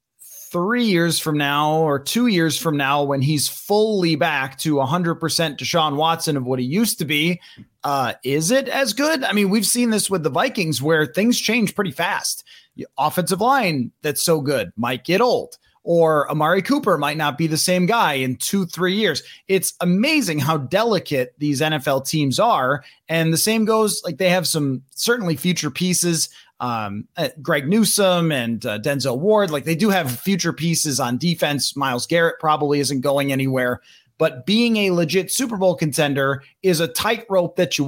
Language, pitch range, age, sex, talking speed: English, 145-185 Hz, 30-49, male, 185 wpm